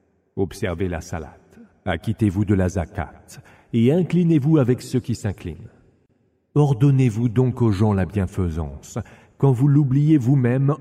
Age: 50-69